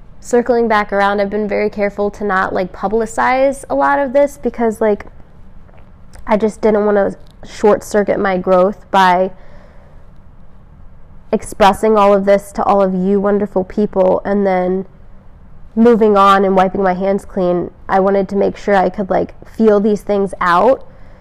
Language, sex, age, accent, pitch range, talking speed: English, female, 20-39, American, 190-215 Hz, 165 wpm